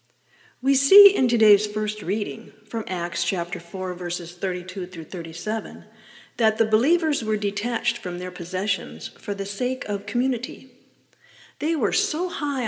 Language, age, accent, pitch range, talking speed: English, 50-69, American, 180-245 Hz, 145 wpm